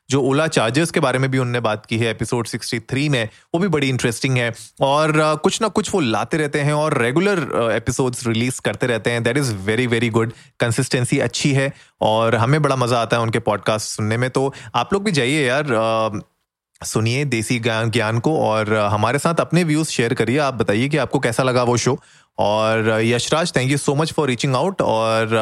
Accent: native